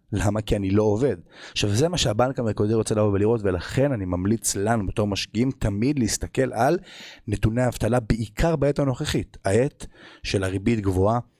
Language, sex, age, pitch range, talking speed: Hebrew, male, 30-49, 95-125 Hz, 165 wpm